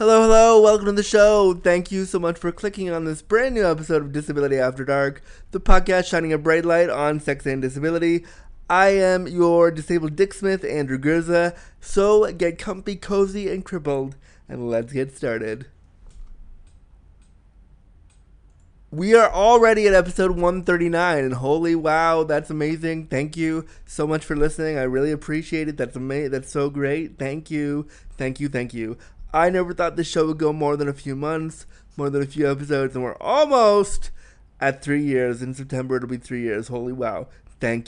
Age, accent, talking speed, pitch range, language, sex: 20-39, American, 180 wpm, 130-180 Hz, English, male